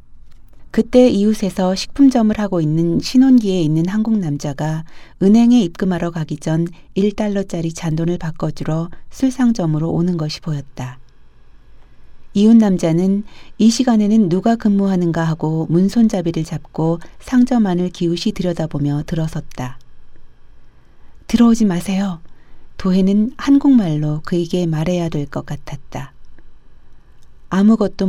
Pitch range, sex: 155-200 Hz, female